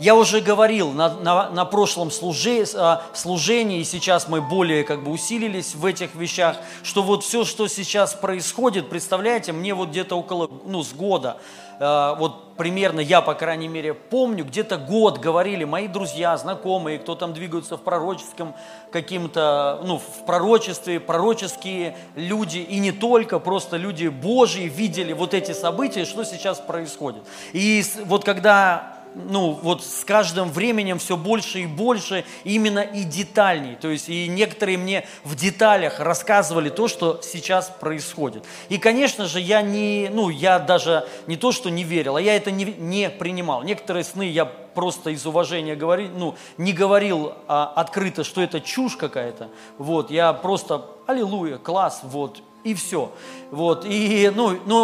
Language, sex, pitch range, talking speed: Russian, male, 165-205 Hz, 160 wpm